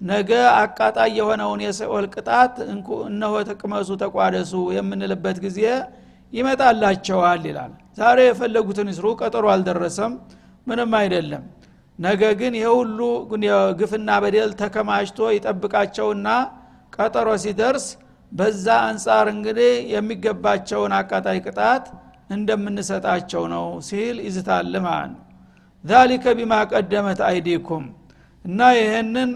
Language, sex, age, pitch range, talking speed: Amharic, male, 60-79, 190-225 Hz, 95 wpm